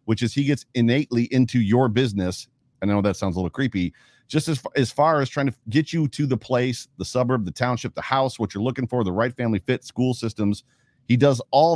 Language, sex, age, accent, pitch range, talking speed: English, male, 40-59, American, 100-130 Hz, 235 wpm